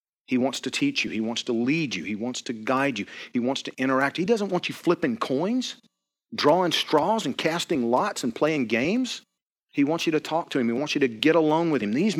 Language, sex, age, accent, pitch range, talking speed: English, male, 40-59, American, 120-170 Hz, 240 wpm